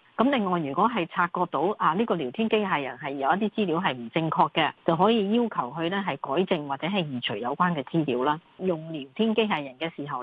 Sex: female